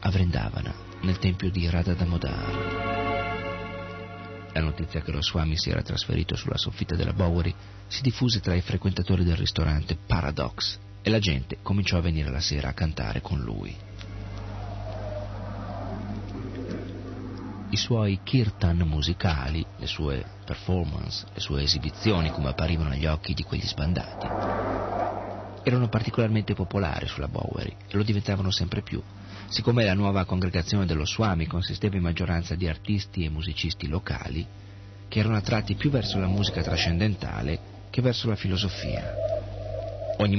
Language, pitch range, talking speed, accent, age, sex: Italian, 85-105 Hz, 135 wpm, native, 40-59, male